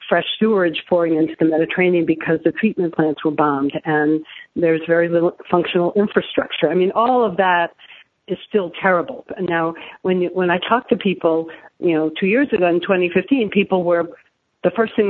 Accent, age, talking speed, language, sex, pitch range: American, 50-69, 195 wpm, English, female, 155-180 Hz